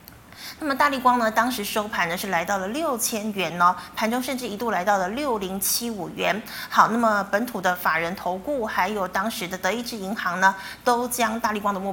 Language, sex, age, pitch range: Chinese, female, 30-49, 185-235 Hz